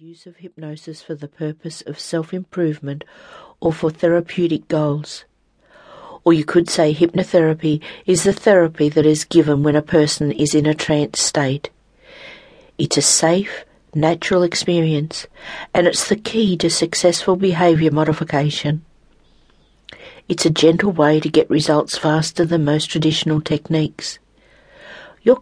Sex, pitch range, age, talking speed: female, 155-175 Hz, 50-69, 135 wpm